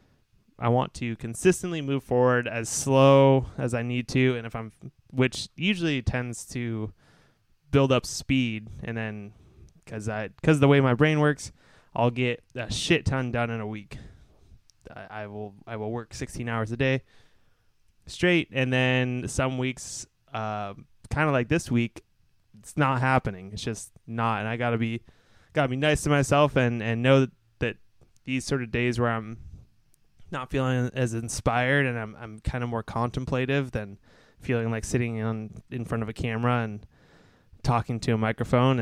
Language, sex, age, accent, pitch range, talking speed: English, male, 20-39, American, 110-130 Hz, 175 wpm